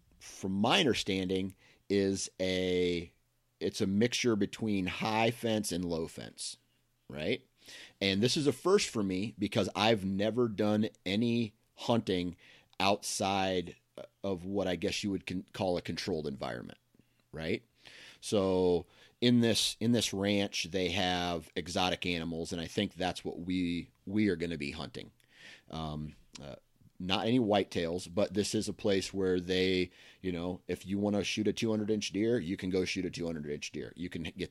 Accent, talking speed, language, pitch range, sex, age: American, 170 wpm, English, 90-105 Hz, male, 30-49